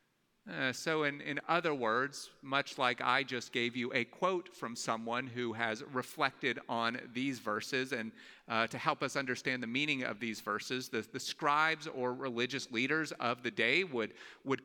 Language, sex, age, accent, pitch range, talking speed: English, male, 40-59, American, 120-150 Hz, 180 wpm